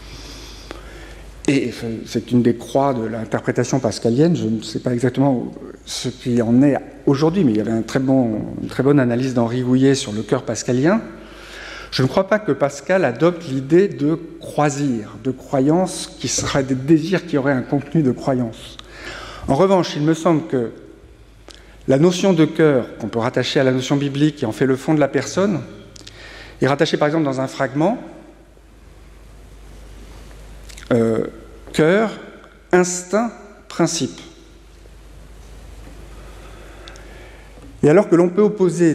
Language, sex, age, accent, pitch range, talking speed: French, male, 50-69, French, 130-170 Hz, 145 wpm